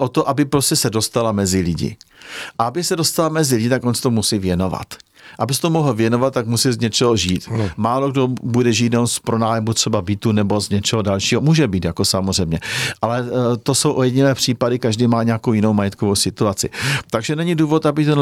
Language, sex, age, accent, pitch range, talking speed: Czech, male, 50-69, native, 115-140 Hz, 205 wpm